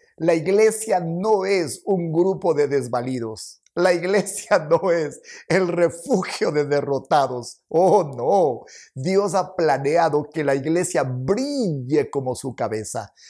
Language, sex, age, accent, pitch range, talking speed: Spanish, male, 50-69, Mexican, 140-180 Hz, 125 wpm